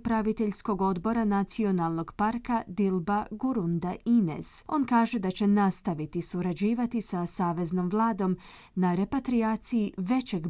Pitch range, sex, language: 175-225 Hz, female, Croatian